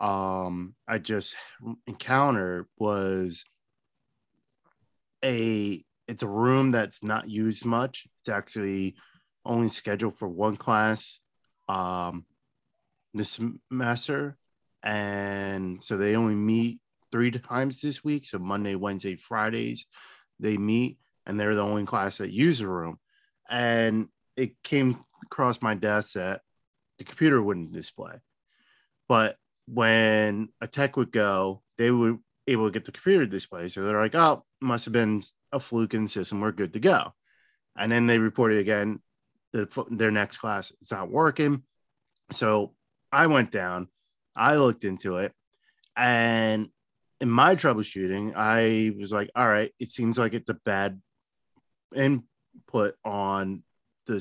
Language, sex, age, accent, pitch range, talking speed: English, male, 20-39, American, 100-125 Hz, 140 wpm